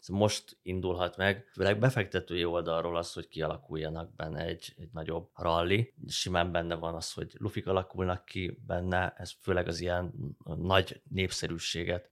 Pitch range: 90-105 Hz